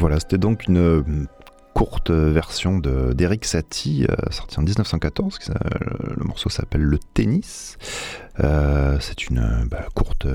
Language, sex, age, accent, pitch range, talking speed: French, male, 30-49, French, 75-100 Hz, 130 wpm